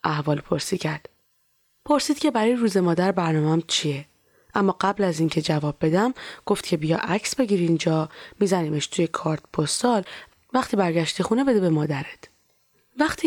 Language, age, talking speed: Persian, 20-39, 150 wpm